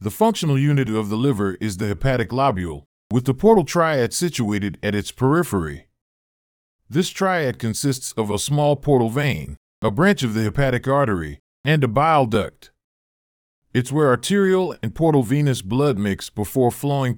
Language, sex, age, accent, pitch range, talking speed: English, male, 40-59, American, 105-145 Hz, 160 wpm